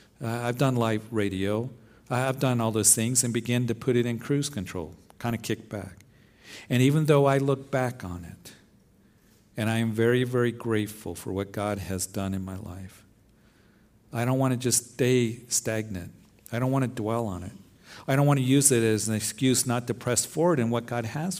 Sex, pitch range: male, 105-140 Hz